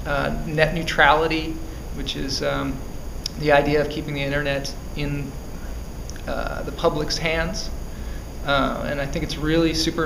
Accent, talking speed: American, 145 wpm